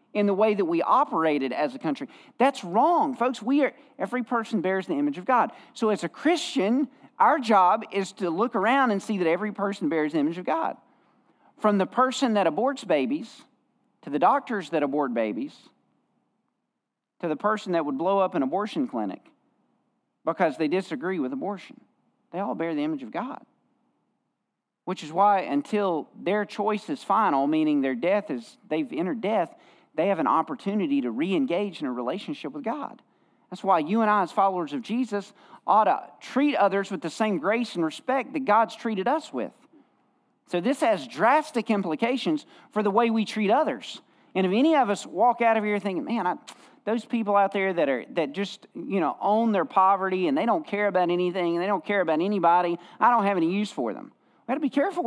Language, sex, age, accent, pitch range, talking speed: English, male, 40-59, American, 190-255 Hz, 200 wpm